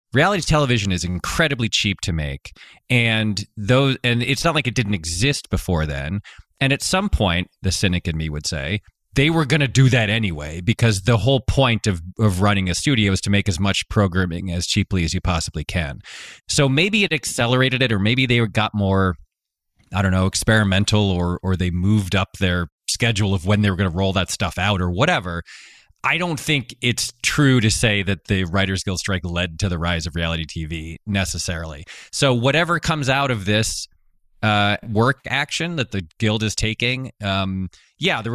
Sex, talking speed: male, 195 wpm